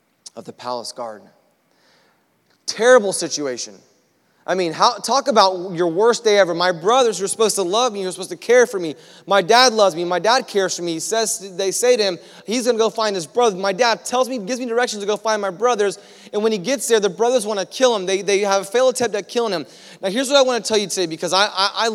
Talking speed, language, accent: 260 wpm, English, American